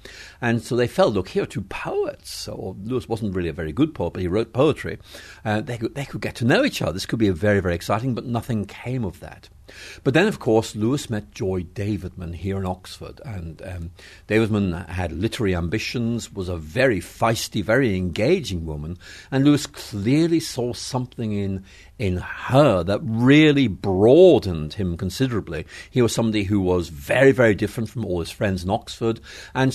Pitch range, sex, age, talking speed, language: 95-120 Hz, male, 60-79, 190 wpm, English